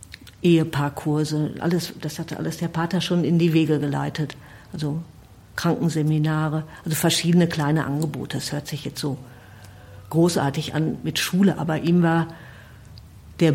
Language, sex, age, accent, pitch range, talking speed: German, female, 50-69, German, 145-175 Hz, 135 wpm